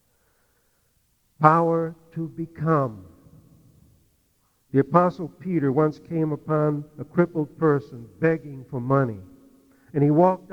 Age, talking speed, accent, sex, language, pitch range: 50-69, 105 wpm, American, male, English, 150-190 Hz